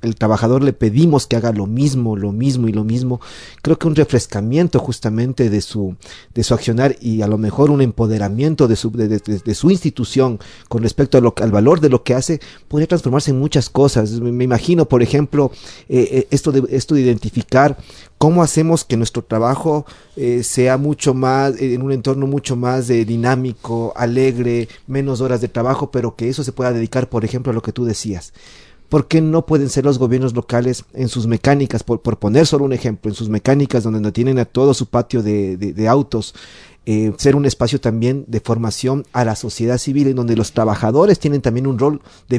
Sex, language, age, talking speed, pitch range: male, Spanish, 40-59, 210 wpm, 115-145 Hz